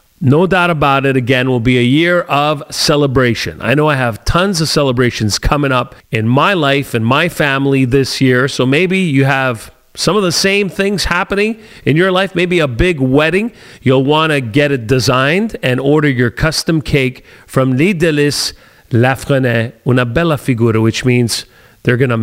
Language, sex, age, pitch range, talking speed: English, male, 40-59, 125-160 Hz, 180 wpm